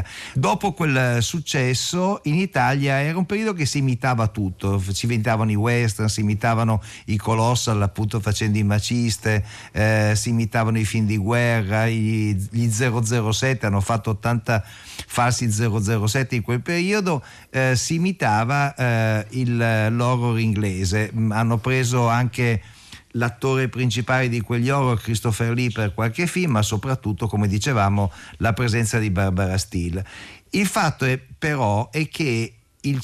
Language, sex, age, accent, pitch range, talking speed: Italian, male, 50-69, native, 110-140 Hz, 140 wpm